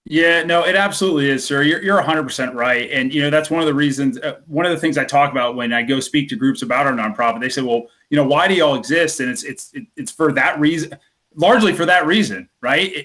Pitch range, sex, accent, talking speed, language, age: 140-170 Hz, male, American, 260 wpm, English, 30-49